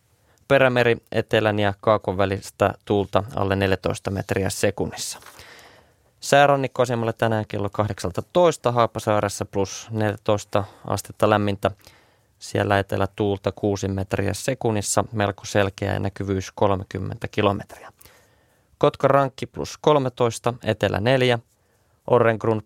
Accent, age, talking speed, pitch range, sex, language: native, 20-39, 95 wpm, 100-120 Hz, male, Finnish